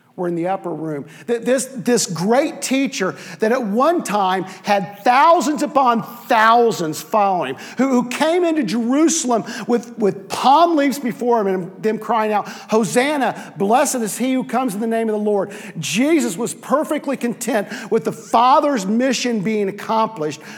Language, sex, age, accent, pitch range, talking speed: English, male, 50-69, American, 175-245 Hz, 160 wpm